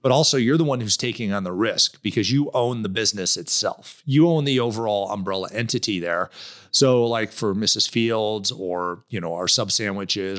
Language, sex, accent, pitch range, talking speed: English, male, American, 105-140 Hz, 195 wpm